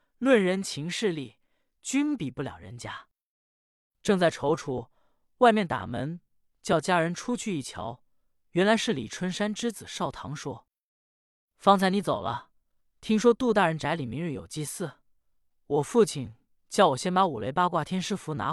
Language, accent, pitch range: Chinese, native, 140-200 Hz